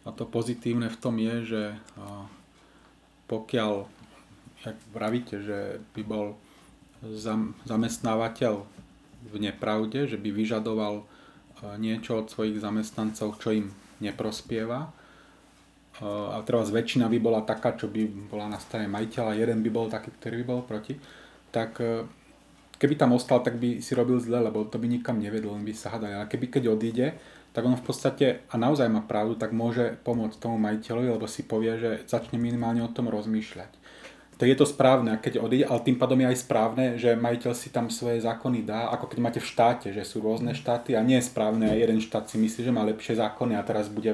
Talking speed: 185 wpm